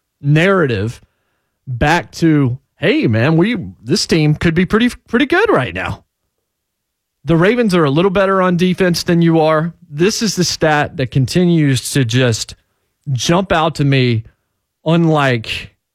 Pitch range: 115-165 Hz